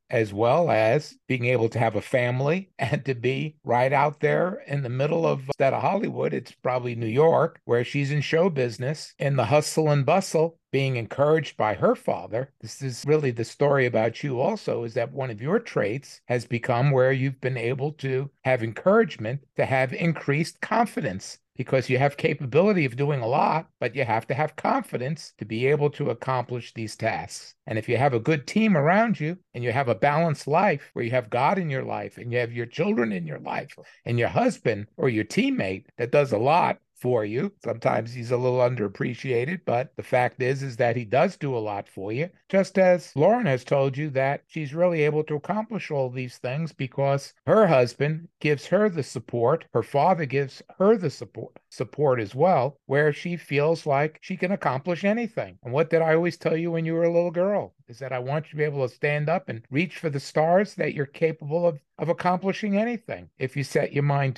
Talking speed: 215 wpm